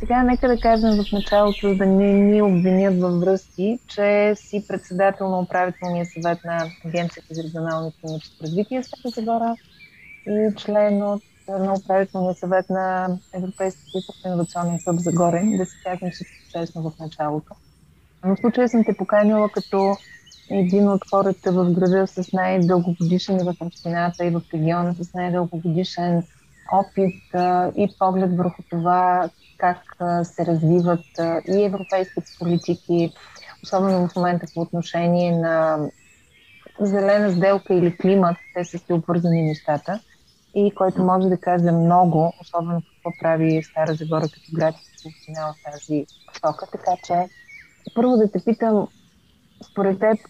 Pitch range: 170-195 Hz